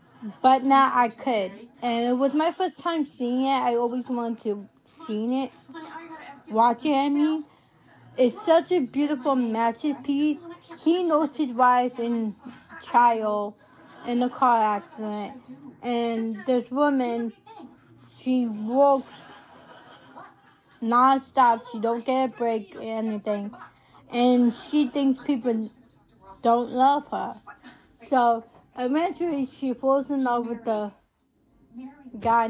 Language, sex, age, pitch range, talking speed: English, female, 20-39, 230-275 Hz, 120 wpm